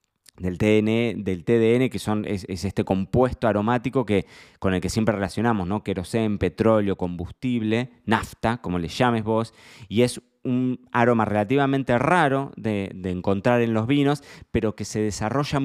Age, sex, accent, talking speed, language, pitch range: 20-39, male, Argentinian, 160 wpm, Spanish, 95-120 Hz